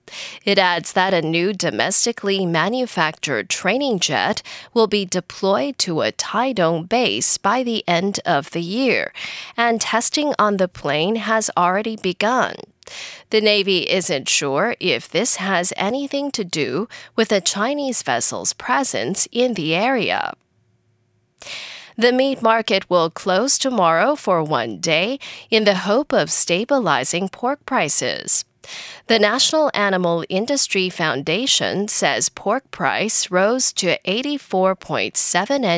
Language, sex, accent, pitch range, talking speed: English, female, American, 180-250 Hz, 125 wpm